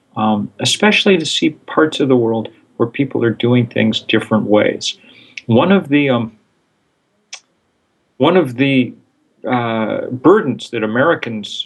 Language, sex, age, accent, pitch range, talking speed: English, male, 40-59, American, 110-125 Hz, 135 wpm